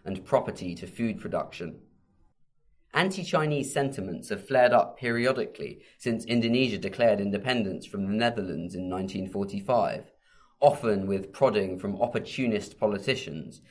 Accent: British